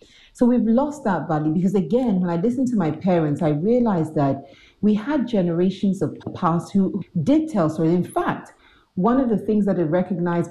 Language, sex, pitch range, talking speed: English, female, 160-210 Hz, 195 wpm